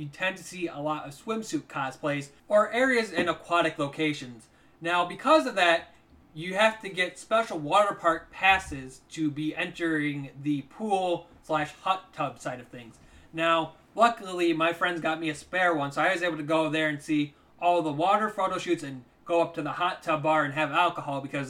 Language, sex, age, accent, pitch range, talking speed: English, male, 30-49, American, 155-190 Hz, 200 wpm